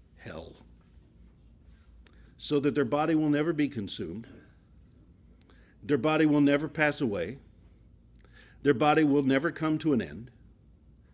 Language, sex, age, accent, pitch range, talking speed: English, male, 50-69, American, 90-150 Hz, 125 wpm